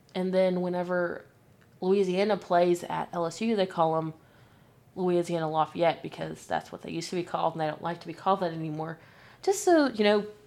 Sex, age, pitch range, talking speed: female, 20-39, 170-200 Hz, 190 wpm